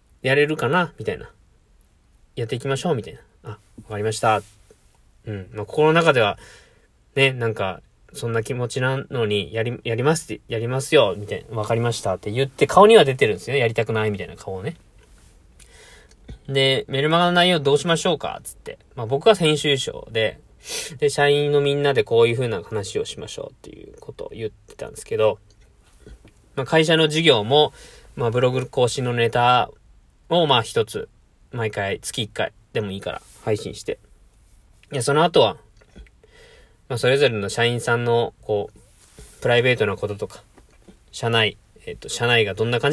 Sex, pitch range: male, 115-160 Hz